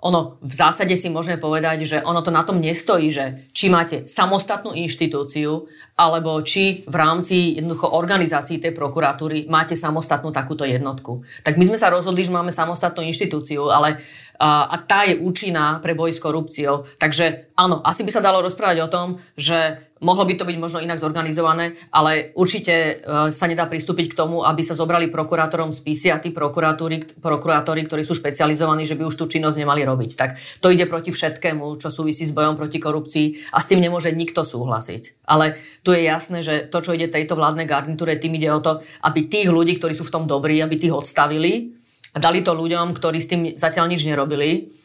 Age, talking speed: 30-49, 190 wpm